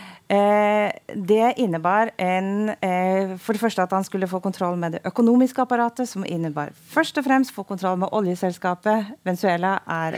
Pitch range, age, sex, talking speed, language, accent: 175-220 Hz, 30-49, female, 170 wpm, English, Norwegian